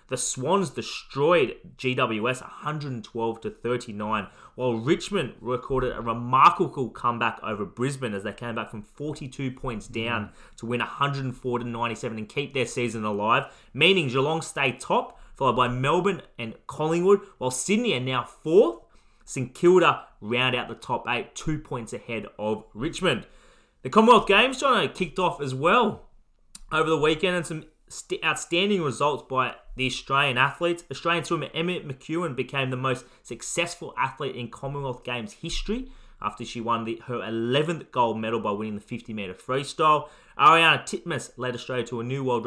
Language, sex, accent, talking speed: English, male, Australian, 155 wpm